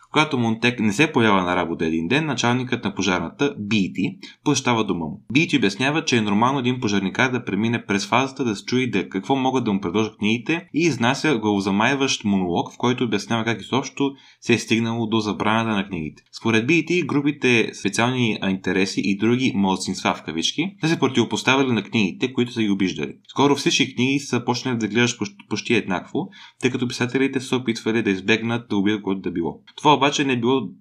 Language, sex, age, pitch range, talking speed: Bulgarian, male, 20-39, 100-130 Hz, 185 wpm